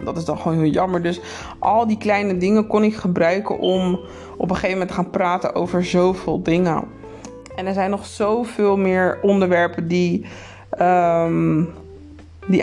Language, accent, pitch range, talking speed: Dutch, Dutch, 165-190 Hz, 160 wpm